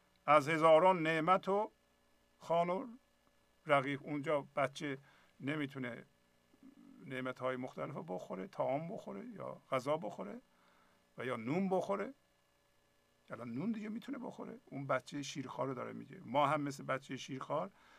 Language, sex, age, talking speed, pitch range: Persian, male, 50-69, 120 wpm, 130-185 Hz